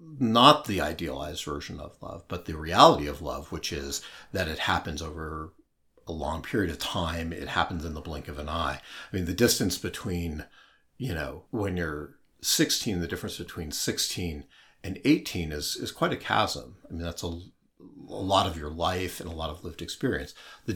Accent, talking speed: American, 195 wpm